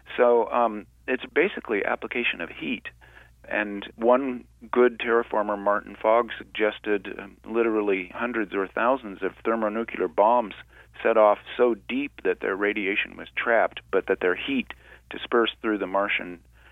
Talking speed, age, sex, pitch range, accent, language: 140 wpm, 40-59, male, 105-125 Hz, American, English